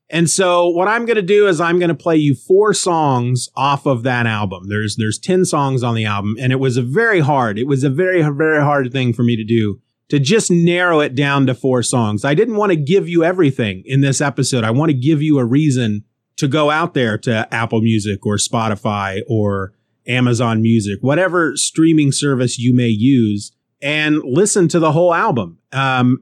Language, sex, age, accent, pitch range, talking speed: English, male, 30-49, American, 120-170 Hz, 215 wpm